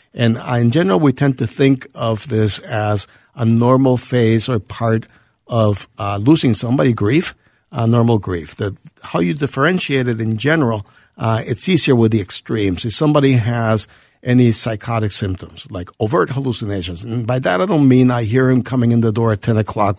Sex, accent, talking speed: male, American, 185 wpm